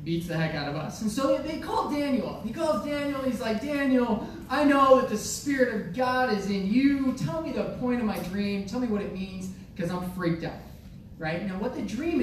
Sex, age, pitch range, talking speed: male, 30-49, 185-250 Hz, 235 wpm